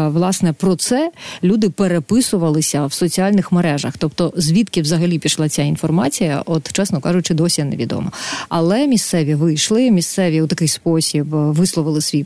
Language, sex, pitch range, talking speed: Ukrainian, female, 155-185 Hz, 135 wpm